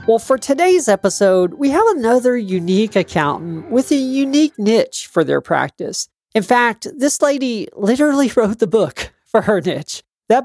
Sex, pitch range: male, 165-235 Hz